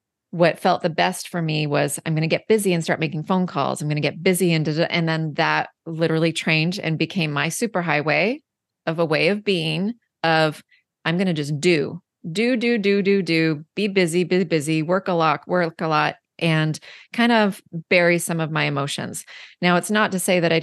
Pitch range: 160-180 Hz